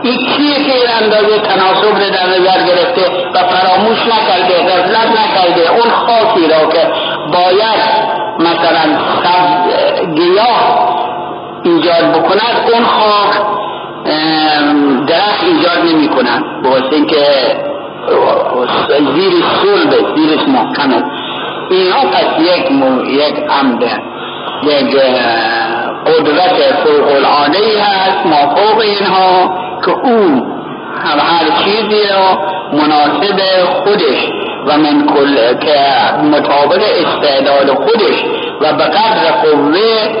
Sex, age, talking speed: male, 60-79, 105 wpm